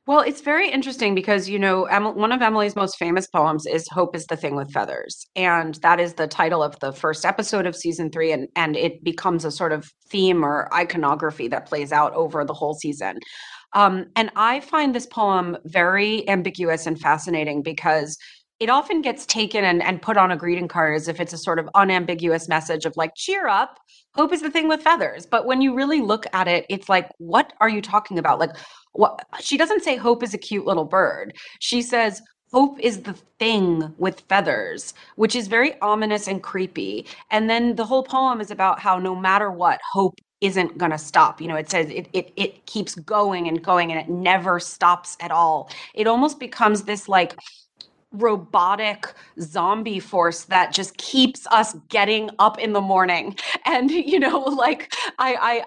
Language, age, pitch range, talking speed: English, 30-49, 175-235 Hz, 195 wpm